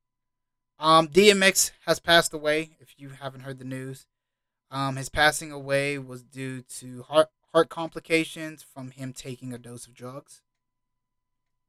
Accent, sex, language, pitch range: American, male, English, 125-155 Hz